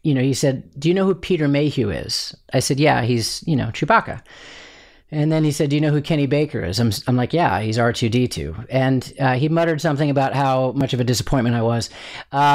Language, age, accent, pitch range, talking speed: English, 30-49, American, 125-160 Hz, 235 wpm